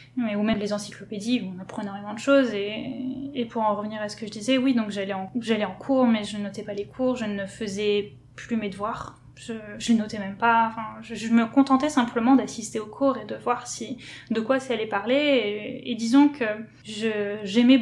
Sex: female